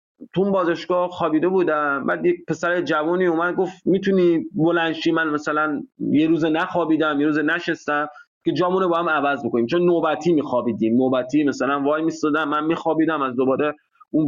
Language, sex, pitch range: English, male, 145-190 Hz